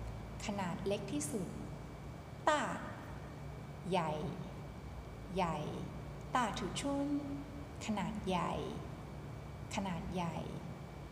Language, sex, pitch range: Thai, female, 175-220 Hz